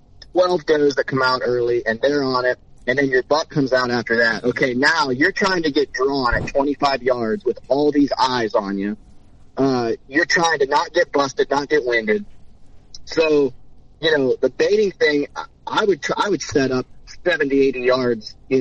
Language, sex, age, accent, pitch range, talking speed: English, male, 30-49, American, 130-205 Hz, 195 wpm